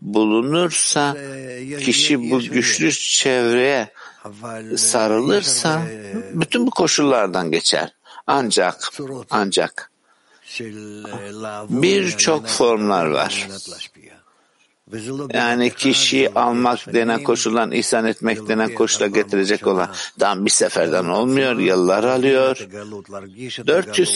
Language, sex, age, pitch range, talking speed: Turkish, male, 60-79, 105-130 Hz, 80 wpm